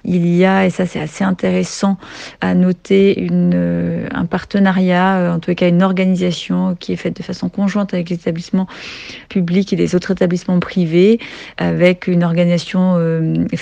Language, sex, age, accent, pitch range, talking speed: French, female, 30-49, French, 160-185 Hz, 165 wpm